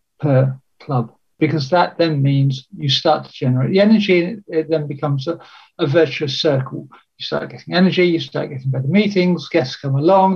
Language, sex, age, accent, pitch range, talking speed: English, male, 60-79, British, 140-180 Hz, 190 wpm